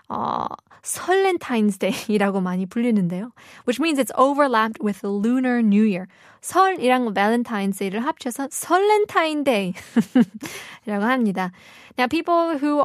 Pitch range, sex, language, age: 205-275 Hz, female, Korean, 10-29